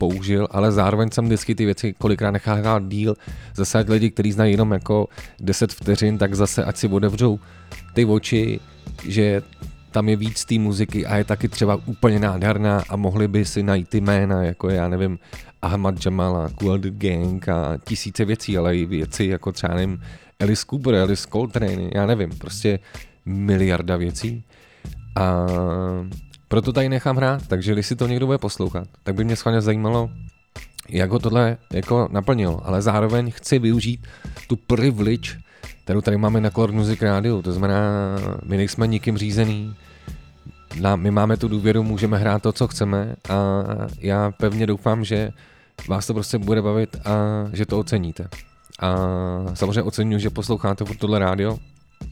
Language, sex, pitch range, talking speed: Czech, male, 95-110 Hz, 160 wpm